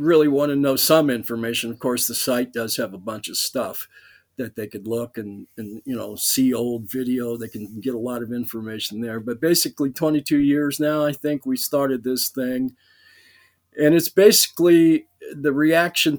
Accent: American